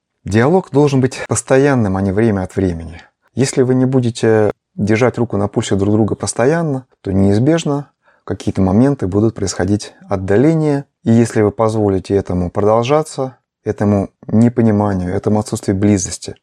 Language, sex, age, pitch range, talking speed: Russian, male, 30-49, 100-120 Hz, 140 wpm